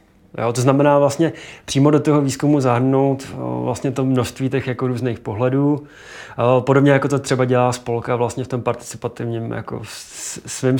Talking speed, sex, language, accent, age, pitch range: 155 wpm, male, Czech, native, 20-39, 120-140 Hz